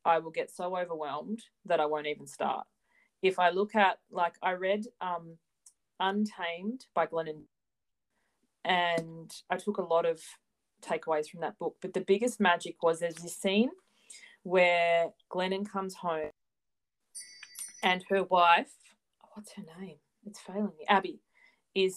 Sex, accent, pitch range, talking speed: female, Australian, 165-200 Hz, 150 wpm